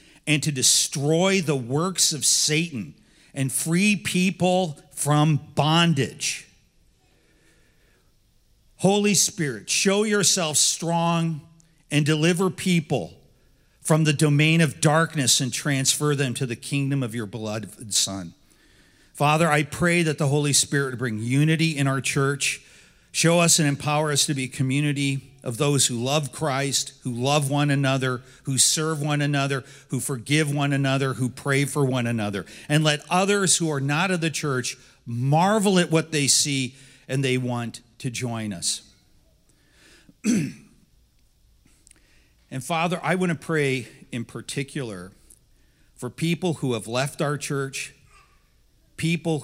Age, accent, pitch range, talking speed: 50-69, American, 130-160 Hz, 135 wpm